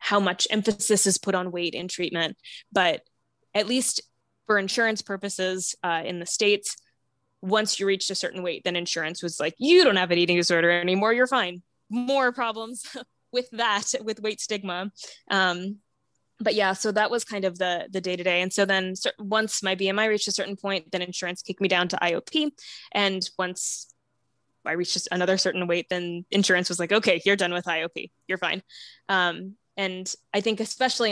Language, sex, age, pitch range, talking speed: English, female, 20-39, 180-210 Hz, 185 wpm